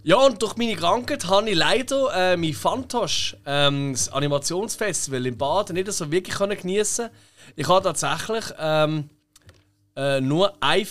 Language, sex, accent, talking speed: German, male, German, 150 wpm